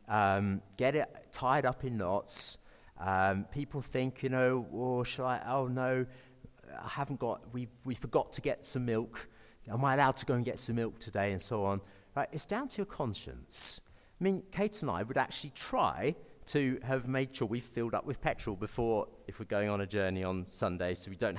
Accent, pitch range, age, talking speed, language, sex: British, 105-150 Hz, 40-59, 210 wpm, English, male